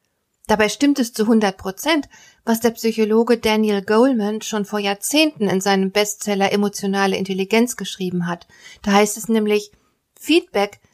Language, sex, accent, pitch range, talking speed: German, female, German, 200-250 Hz, 145 wpm